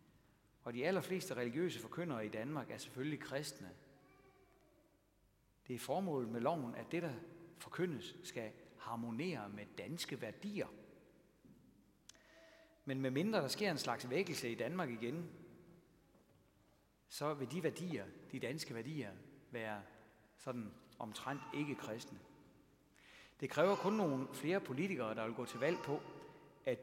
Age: 60-79